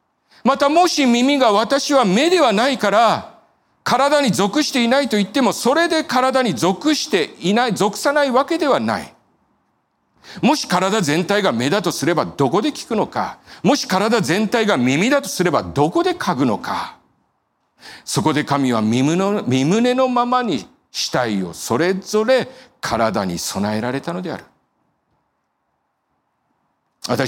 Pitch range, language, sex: 160-265 Hz, Japanese, male